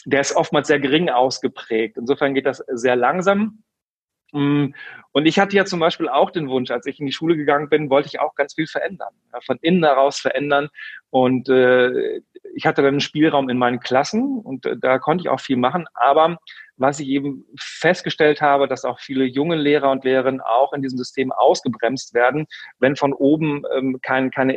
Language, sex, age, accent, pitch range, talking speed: German, male, 40-59, German, 130-155 Hz, 185 wpm